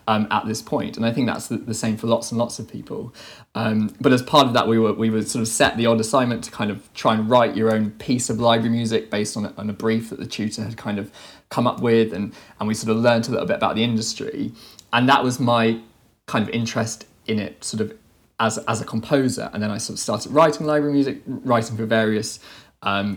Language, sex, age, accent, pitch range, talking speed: English, male, 20-39, British, 110-130 Hz, 255 wpm